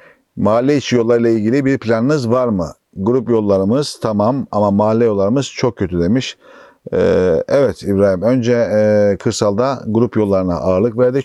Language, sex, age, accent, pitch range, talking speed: Turkish, male, 50-69, native, 95-115 Hz, 150 wpm